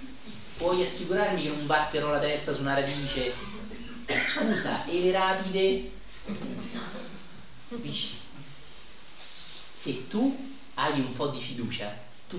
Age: 40-59